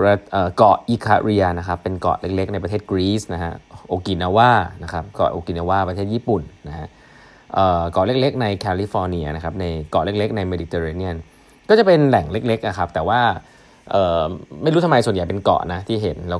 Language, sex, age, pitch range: Thai, male, 20-39, 90-110 Hz